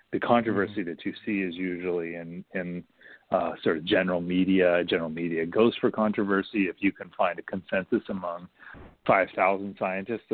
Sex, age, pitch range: male, 40-59, 90-110 Hz